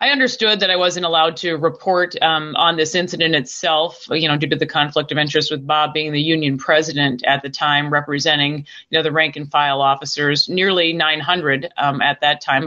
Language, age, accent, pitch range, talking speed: English, 30-49, American, 150-185 Hz, 210 wpm